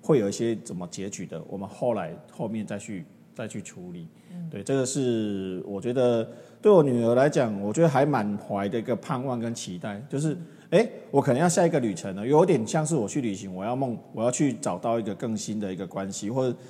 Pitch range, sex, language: 105-145 Hz, male, Chinese